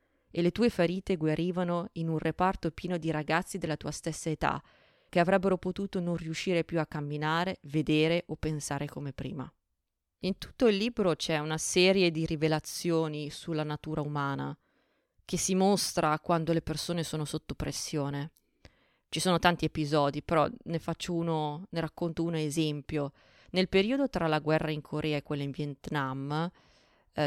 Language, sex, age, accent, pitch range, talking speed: Italian, female, 20-39, native, 150-180 Hz, 160 wpm